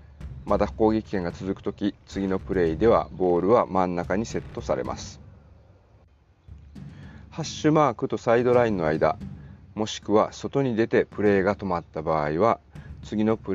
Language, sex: Japanese, male